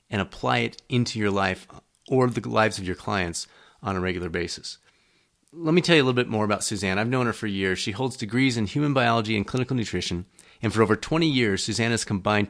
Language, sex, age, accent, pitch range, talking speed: English, male, 40-59, American, 95-125 Hz, 230 wpm